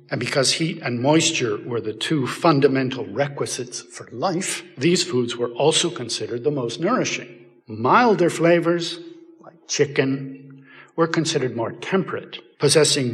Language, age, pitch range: English, 60-79, 130-185 Hz